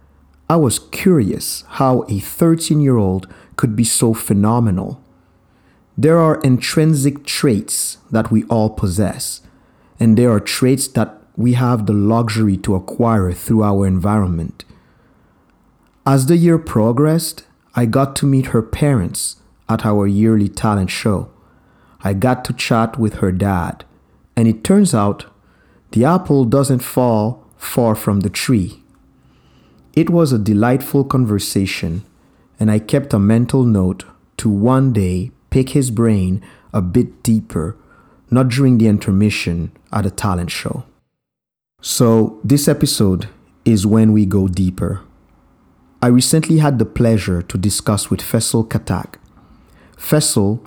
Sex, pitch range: male, 100-130 Hz